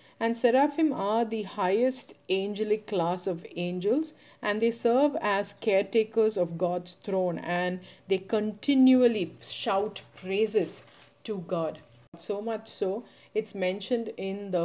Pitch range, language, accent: 175-205 Hz, English, Indian